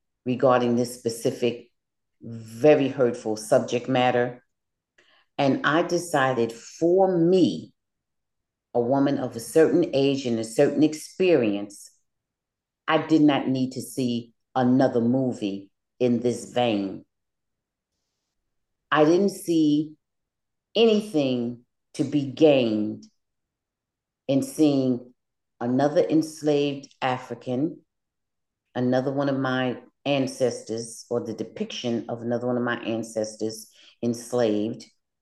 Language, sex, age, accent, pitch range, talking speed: English, female, 40-59, American, 115-160 Hz, 100 wpm